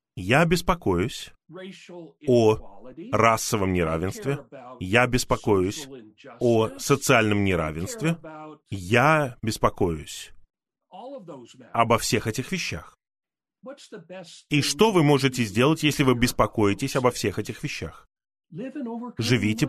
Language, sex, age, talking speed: Russian, male, 30-49, 90 wpm